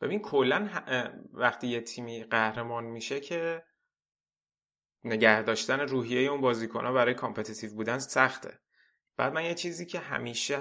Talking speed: 130 wpm